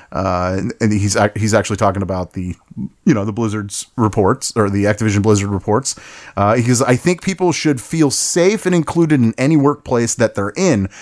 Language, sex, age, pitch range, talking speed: English, male, 30-49, 105-140 Hz, 185 wpm